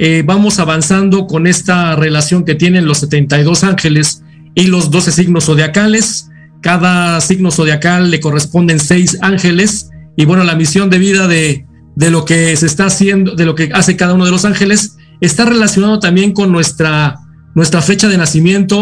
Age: 40-59